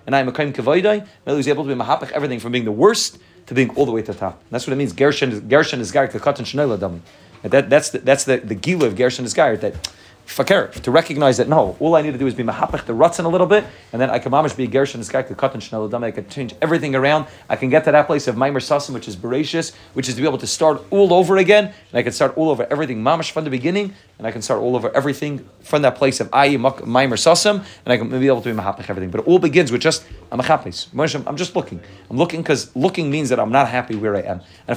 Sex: male